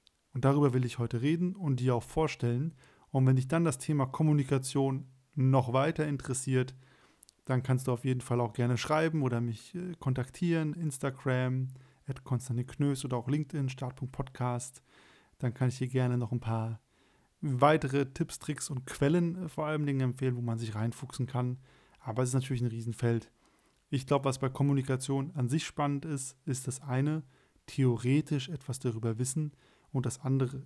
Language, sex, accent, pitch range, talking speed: German, male, German, 125-150 Hz, 170 wpm